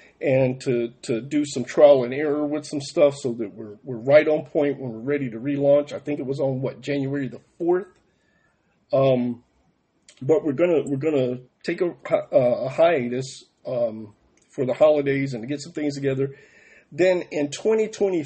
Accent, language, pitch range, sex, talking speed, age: American, English, 130-165 Hz, male, 185 wpm, 40-59